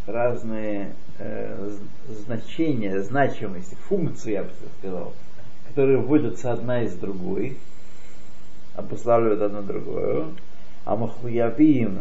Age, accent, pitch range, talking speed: 50-69, native, 105-140 Hz, 90 wpm